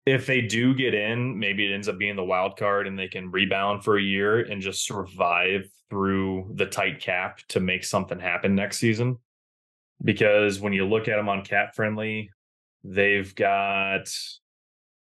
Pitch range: 95-115 Hz